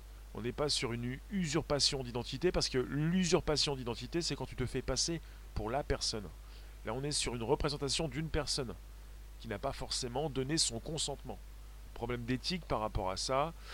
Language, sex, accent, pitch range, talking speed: French, male, French, 100-135 Hz, 185 wpm